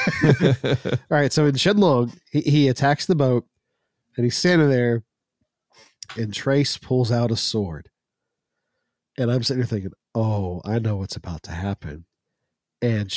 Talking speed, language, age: 150 wpm, English, 40-59